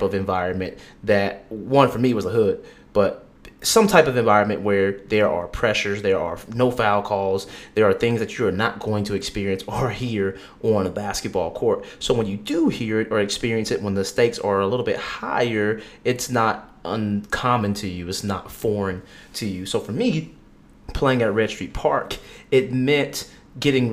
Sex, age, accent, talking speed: male, 30-49, American, 195 wpm